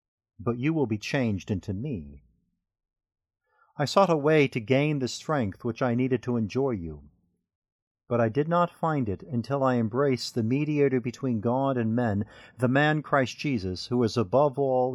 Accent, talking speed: American, 175 wpm